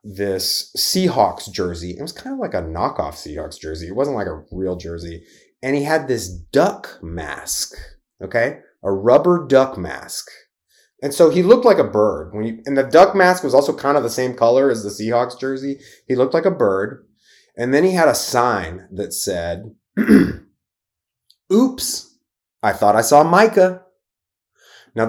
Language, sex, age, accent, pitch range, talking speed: English, male, 30-49, American, 115-180 Hz, 175 wpm